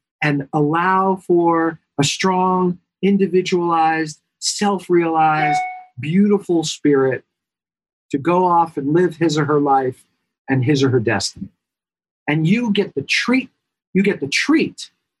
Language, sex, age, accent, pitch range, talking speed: English, male, 50-69, American, 155-195 Hz, 125 wpm